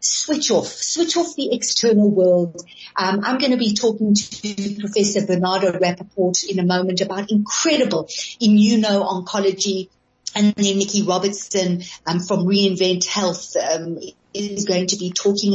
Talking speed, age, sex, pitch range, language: 145 wpm, 40-59, female, 190-240 Hz, English